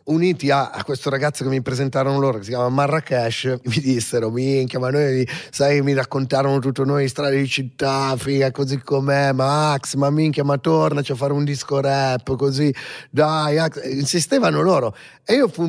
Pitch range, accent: 120-155 Hz, native